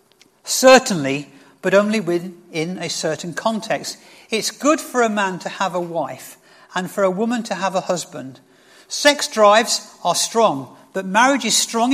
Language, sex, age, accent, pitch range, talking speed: English, male, 50-69, British, 175-225 Hz, 160 wpm